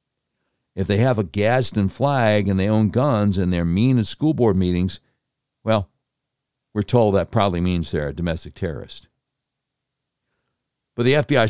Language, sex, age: English, male, 60-79